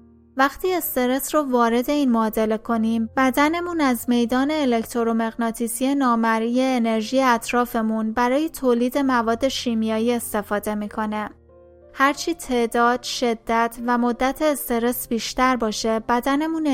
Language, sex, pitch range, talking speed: Persian, female, 225-255 Hz, 105 wpm